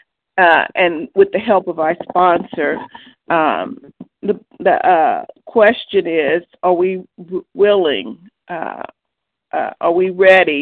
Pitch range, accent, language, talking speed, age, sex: 170-210 Hz, American, English, 130 wpm, 50-69, female